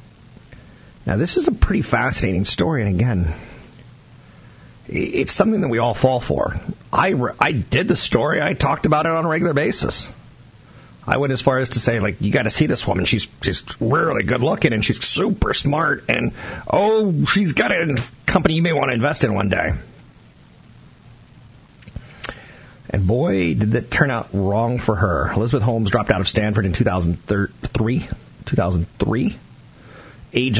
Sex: male